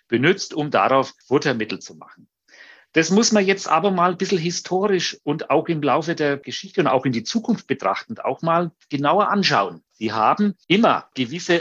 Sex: male